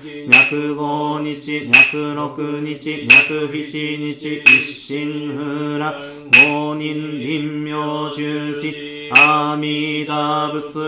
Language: Japanese